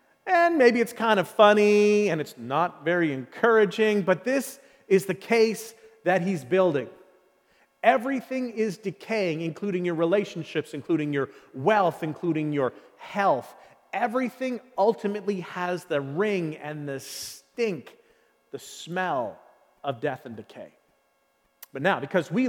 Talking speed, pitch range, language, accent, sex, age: 130 wpm, 165-235 Hz, English, American, male, 40-59